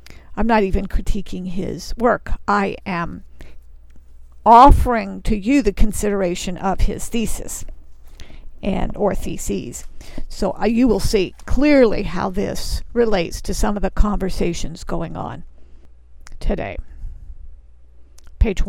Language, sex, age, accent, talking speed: English, female, 50-69, American, 120 wpm